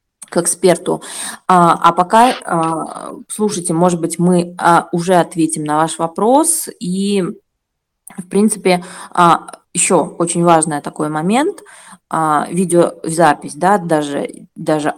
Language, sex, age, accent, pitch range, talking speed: Russian, female, 20-39, native, 165-200 Hz, 105 wpm